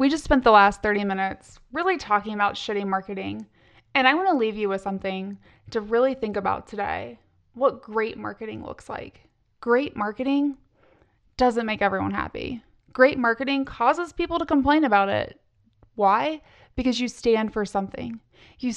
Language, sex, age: English, female, 20-39